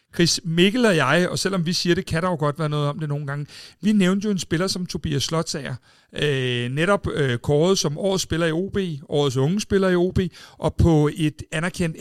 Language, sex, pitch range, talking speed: Danish, male, 140-175 Hz, 215 wpm